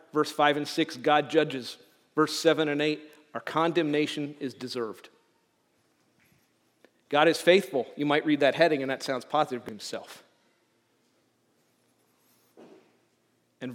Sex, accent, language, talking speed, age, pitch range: male, American, English, 125 wpm, 40-59, 125-150 Hz